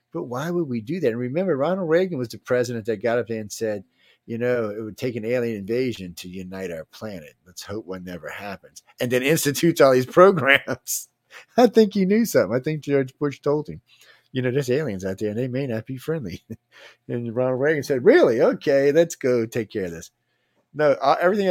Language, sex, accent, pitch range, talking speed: English, male, American, 105-135 Hz, 220 wpm